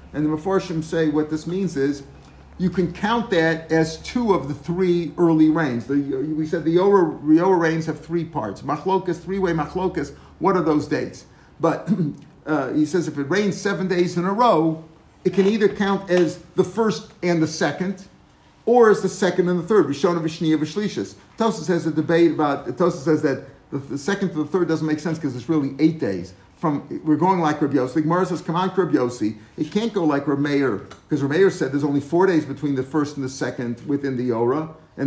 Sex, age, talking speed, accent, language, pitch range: male, 50-69, 210 wpm, American, English, 150-185 Hz